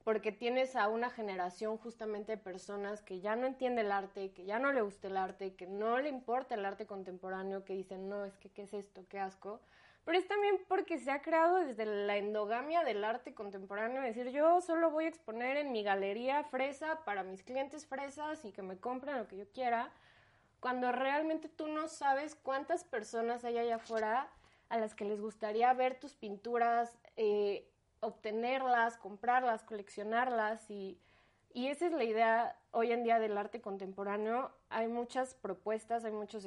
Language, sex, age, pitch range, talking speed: Spanish, female, 20-39, 205-250 Hz, 185 wpm